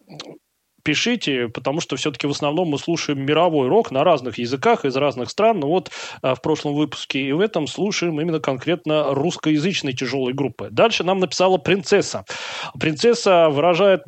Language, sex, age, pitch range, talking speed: Russian, male, 30-49, 145-180 Hz, 160 wpm